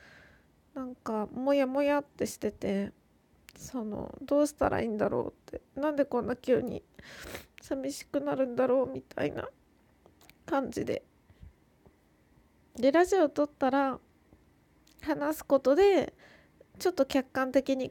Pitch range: 225-275 Hz